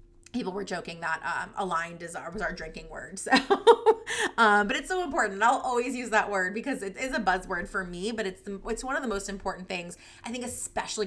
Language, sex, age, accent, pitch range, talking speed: English, female, 20-39, American, 175-220 Hz, 240 wpm